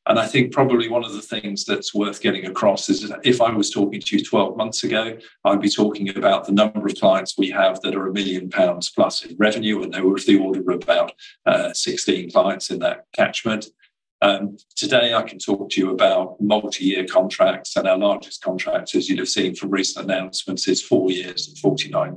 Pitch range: 100-125 Hz